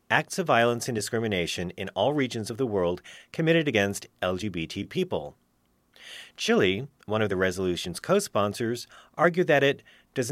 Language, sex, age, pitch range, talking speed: English, male, 40-59, 95-140 Hz, 150 wpm